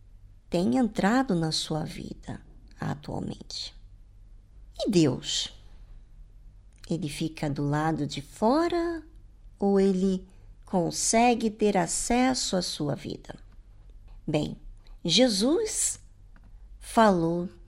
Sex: male